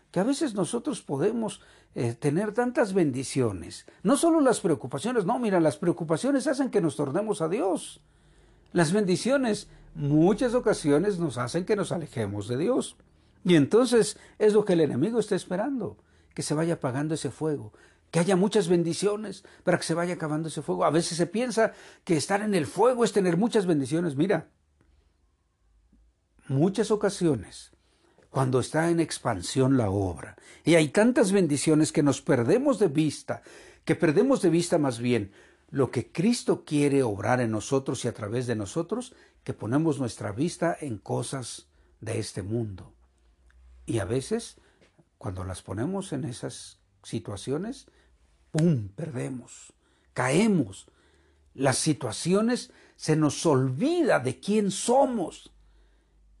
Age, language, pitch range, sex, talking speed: 60-79, Spanish, 120-200 Hz, male, 145 wpm